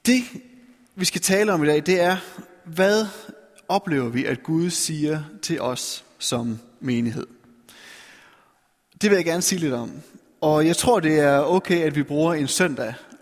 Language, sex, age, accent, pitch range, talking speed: Danish, male, 30-49, native, 140-190 Hz, 170 wpm